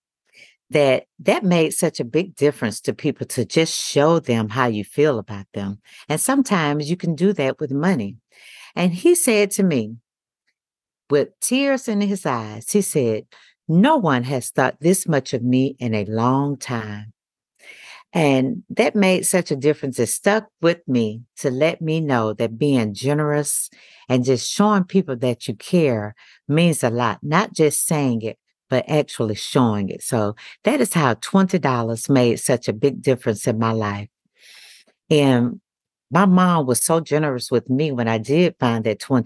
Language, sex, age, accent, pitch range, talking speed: English, female, 50-69, American, 115-160 Hz, 170 wpm